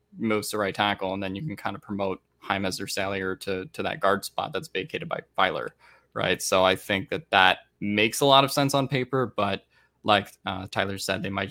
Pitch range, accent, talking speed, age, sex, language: 100-115 Hz, American, 225 wpm, 10-29, male, English